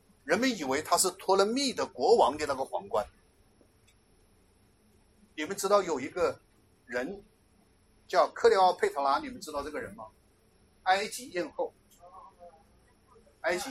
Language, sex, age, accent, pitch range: Chinese, male, 60-79, native, 185-285 Hz